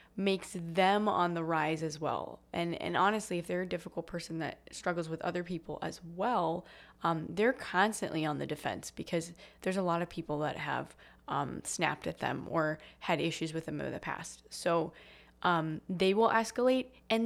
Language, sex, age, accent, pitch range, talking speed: English, female, 20-39, American, 165-200 Hz, 190 wpm